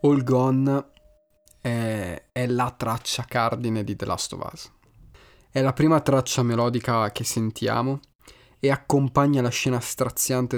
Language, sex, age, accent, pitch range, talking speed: Italian, male, 20-39, native, 110-140 Hz, 135 wpm